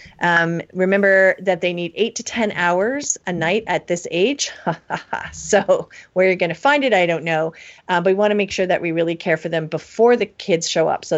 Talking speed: 230 wpm